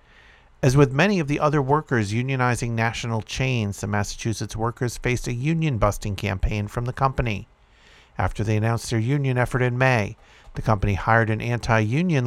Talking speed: 160 wpm